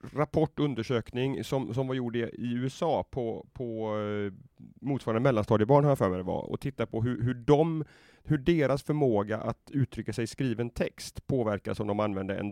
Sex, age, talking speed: male, 30-49, 160 wpm